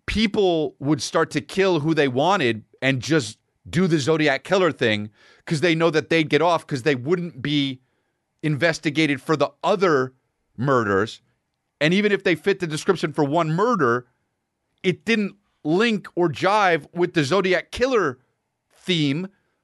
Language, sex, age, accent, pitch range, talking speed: English, male, 40-59, American, 120-170 Hz, 155 wpm